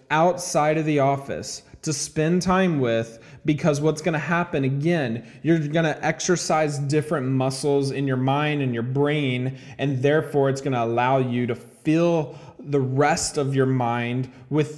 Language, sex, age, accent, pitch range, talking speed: English, male, 20-39, American, 130-150 Hz, 165 wpm